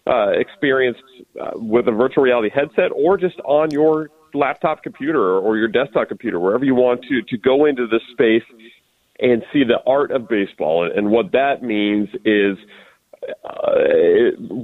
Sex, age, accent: male, 40-59, American